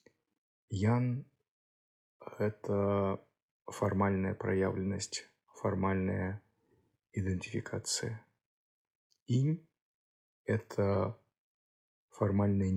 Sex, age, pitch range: male, 20-39, 95-110 Hz